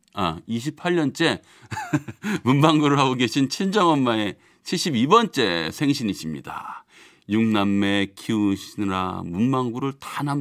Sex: male